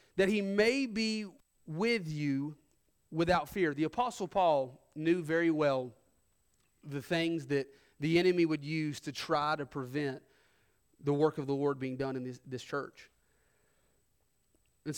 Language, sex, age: English, male, 30-49